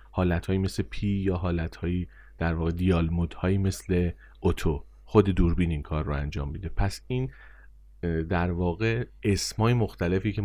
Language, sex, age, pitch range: Persian, male, 30-49, 80-105 Hz